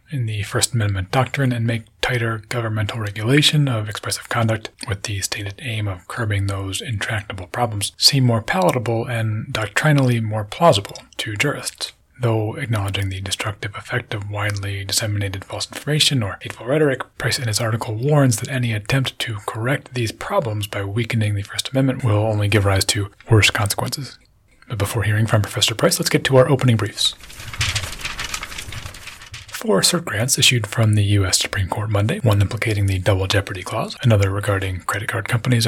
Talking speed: 170 wpm